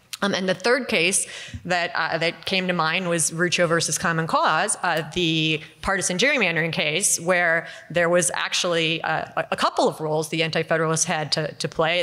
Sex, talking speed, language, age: female, 180 wpm, English, 30-49